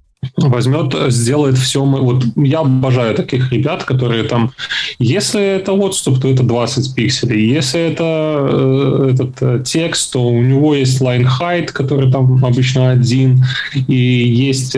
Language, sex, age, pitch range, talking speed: Russian, male, 20-39, 125-145 Hz, 140 wpm